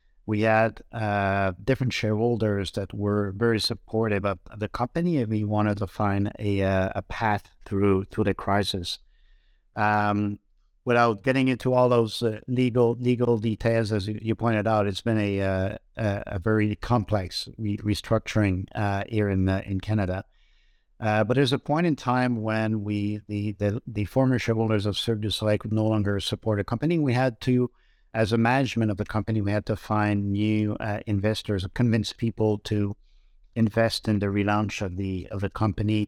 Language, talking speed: English, 175 wpm